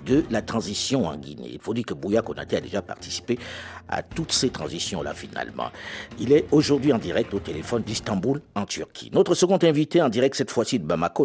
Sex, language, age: male, French, 50-69